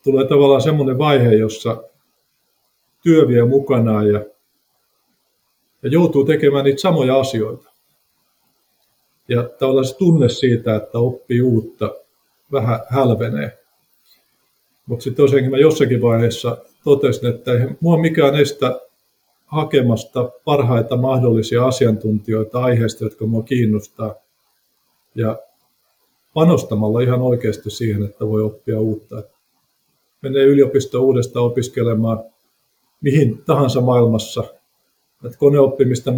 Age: 50-69